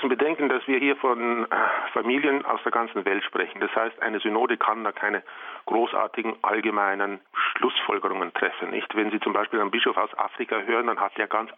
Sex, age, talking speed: male, 40-59, 180 wpm